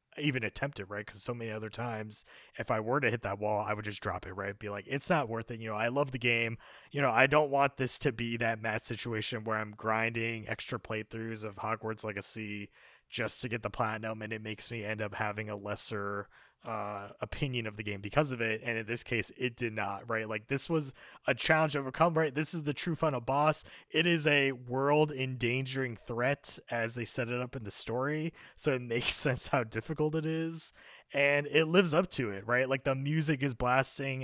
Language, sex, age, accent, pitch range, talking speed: English, male, 30-49, American, 110-135 Hz, 230 wpm